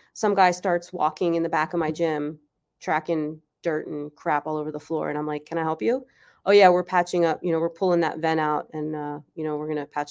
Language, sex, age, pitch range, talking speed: English, female, 30-49, 170-215 Hz, 265 wpm